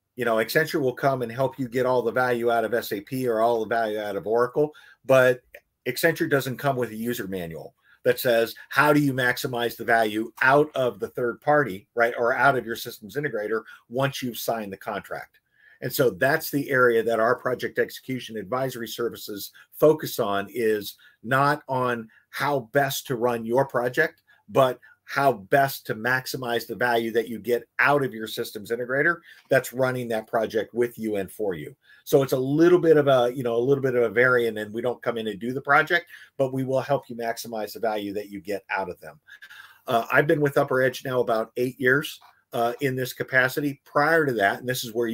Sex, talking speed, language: male, 215 wpm, English